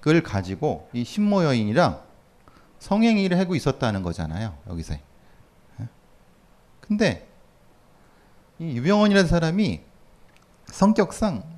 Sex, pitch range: male, 110-175 Hz